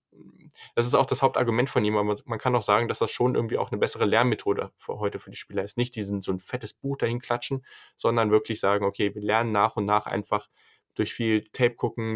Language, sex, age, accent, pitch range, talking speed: German, male, 10-29, German, 100-115 Hz, 225 wpm